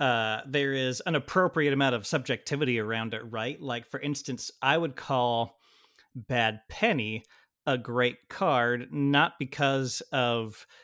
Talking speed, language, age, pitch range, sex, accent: 140 wpm, English, 30-49, 115-140 Hz, male, American